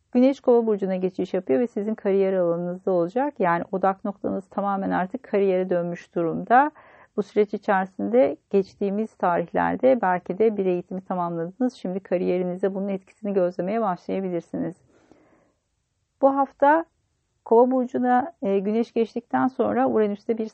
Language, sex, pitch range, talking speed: Turkish, female, 180-225 Hz, 125 wpm